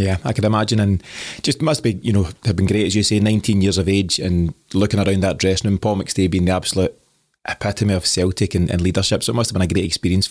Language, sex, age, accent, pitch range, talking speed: English, male, 20-39, British, 95-120 Hz, 260 wpm